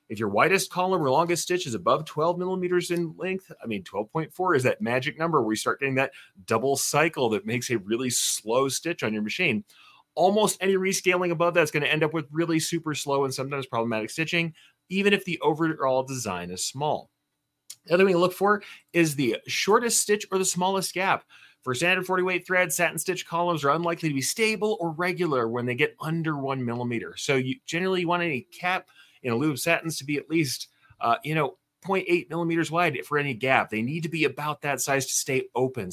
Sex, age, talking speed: male, 30-49, 215 wpm